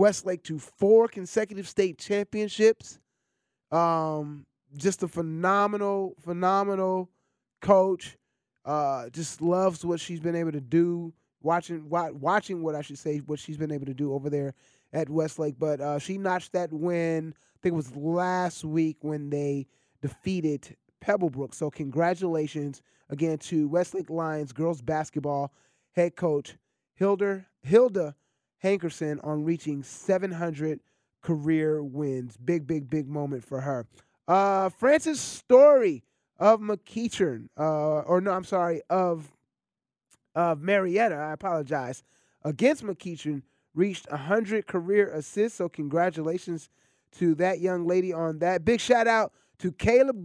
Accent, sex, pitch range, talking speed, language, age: American, male, 150-190 Hz, 135 wpm, English, 20-39